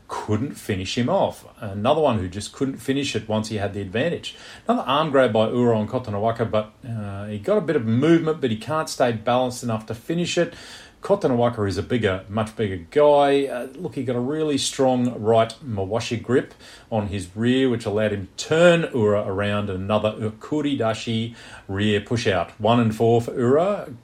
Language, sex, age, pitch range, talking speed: English, male, 40-59, 100-125 Hz, 190 wpm